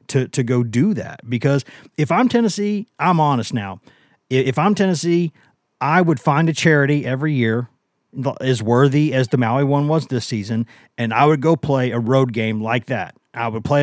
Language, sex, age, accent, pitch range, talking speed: English, male, 40-59, American, 115-145 Hz, 195 wpm